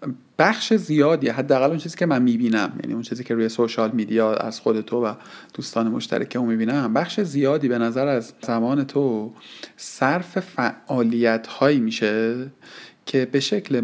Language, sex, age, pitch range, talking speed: Persian, male, 40-59, 115-145 Hz, 150 wpm